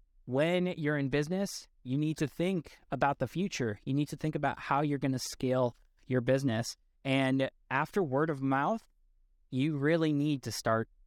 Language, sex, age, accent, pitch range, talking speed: English, male, 20-39, American, 115-150 Hz, 180 wpm